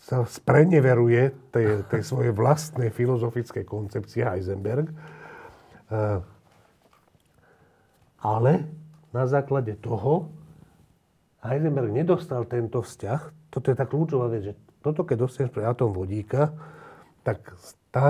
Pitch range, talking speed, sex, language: 110-135 Hz, 100 wpm, male, Slovak